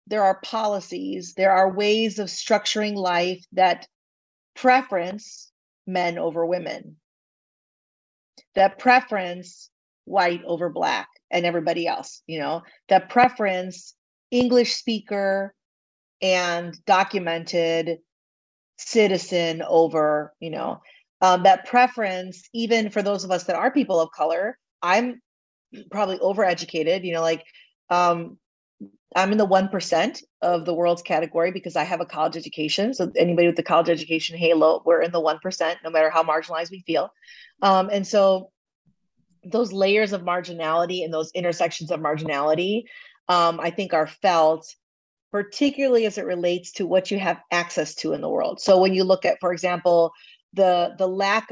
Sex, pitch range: female, 170-200 Hz